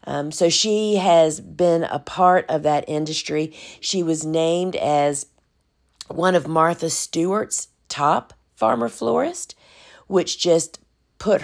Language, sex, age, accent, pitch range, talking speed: English, female, 50-69, American, 155-180 Hz, 125 wpm